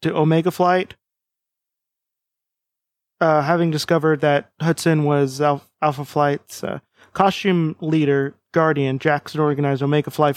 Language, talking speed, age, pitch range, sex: English, 110 wpm, 20-39, 140-165 Hz, male